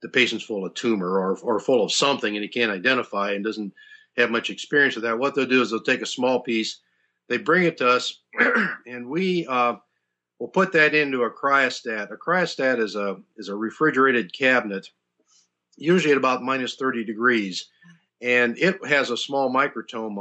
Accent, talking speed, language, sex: American, 190 wpm, English, male